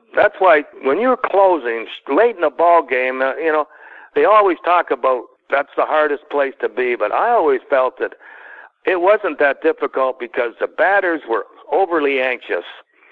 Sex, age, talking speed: male, 60-79, 175 wpm